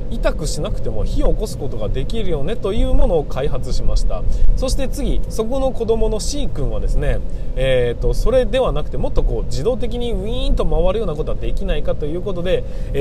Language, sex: Japanese, male